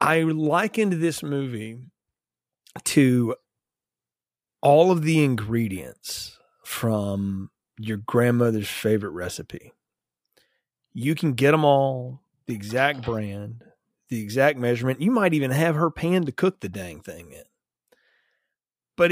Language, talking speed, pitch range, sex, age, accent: English, 120 wpm, 115-170 Hz, male, 30-49, American